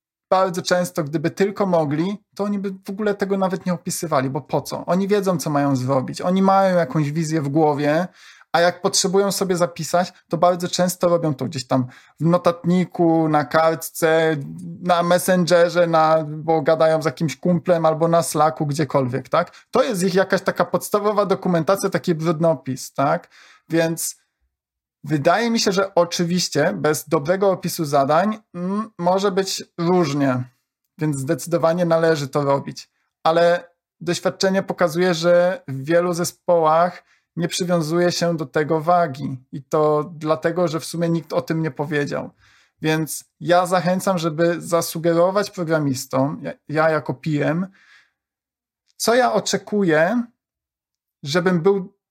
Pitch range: 155-185 Hz